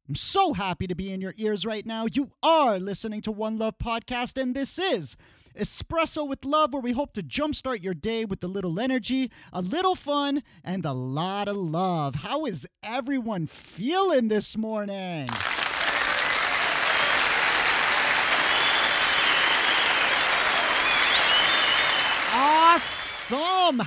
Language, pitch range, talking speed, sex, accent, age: English, 200-290 Hz, 125 wpm, male, American, 30-49